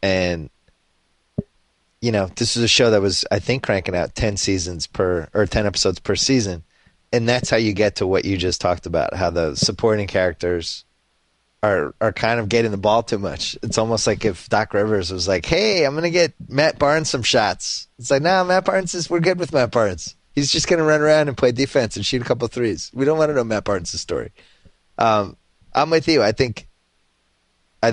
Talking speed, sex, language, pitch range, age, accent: 215 wpm, male, English, 90-120 Hz, 30-49, American